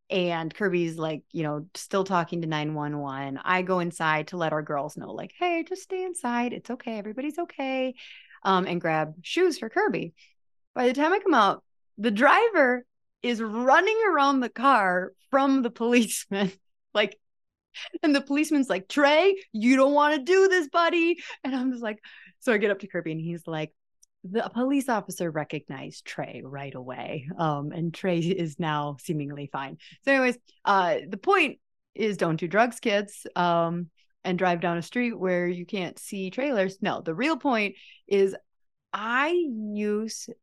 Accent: American